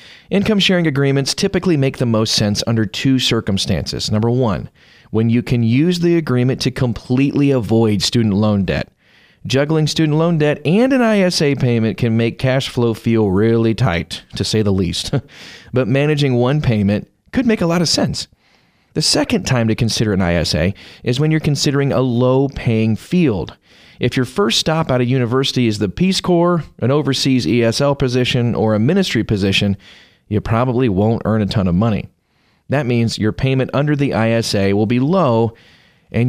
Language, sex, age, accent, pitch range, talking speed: English, male, 30-49, American, 110-145 Hz, 175 wpm